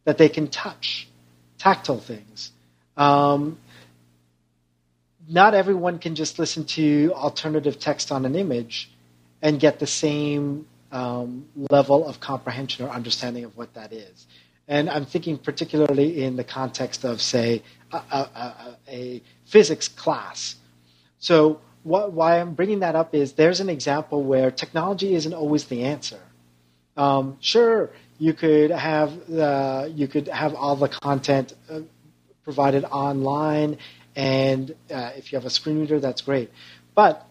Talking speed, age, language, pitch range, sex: 145 wpm, 40-59, English, 120-155 Hz, male